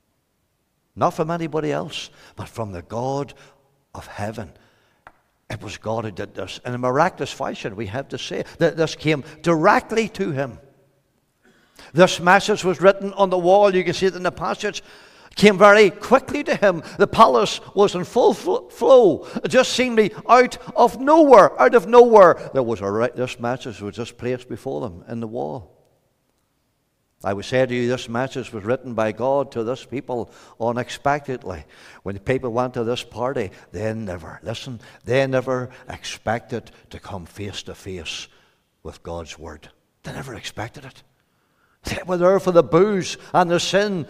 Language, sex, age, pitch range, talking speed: English, male, 60-79, 125-195 Hz, 175 wpm